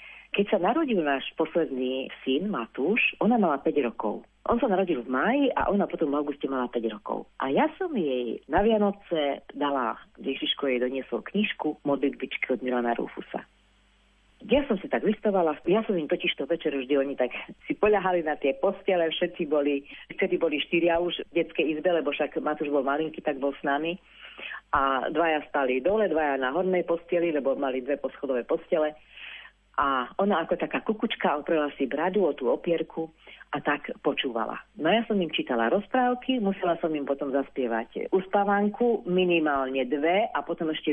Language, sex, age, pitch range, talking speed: Slovak, female, 40-59, 140-190 Hz, 175 wpm